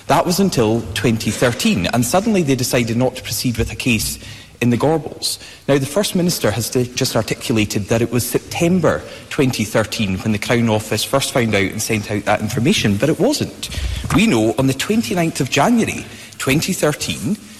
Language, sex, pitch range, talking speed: English, male, 110-150 Hz, 175 wpm